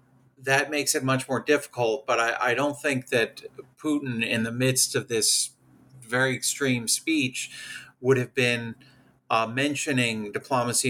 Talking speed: 150 wpm